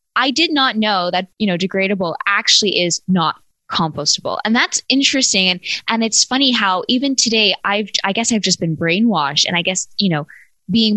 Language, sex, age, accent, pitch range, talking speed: English, female, 10-29, American, 170-215 Hz, 190 wpm